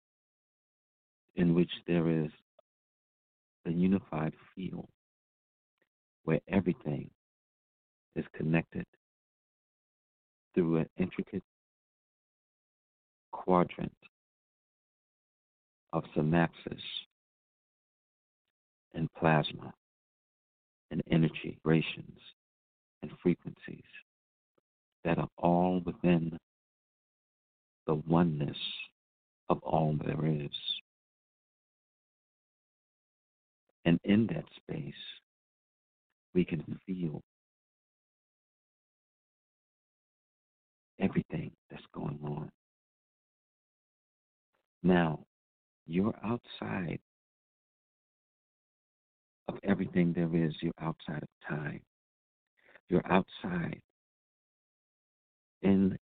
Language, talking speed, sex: English, 65 wpm, male